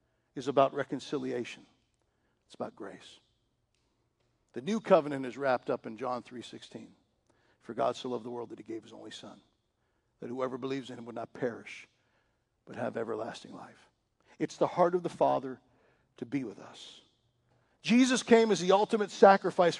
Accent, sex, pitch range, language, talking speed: American, male, 140-220 Hz, English, 170 wpm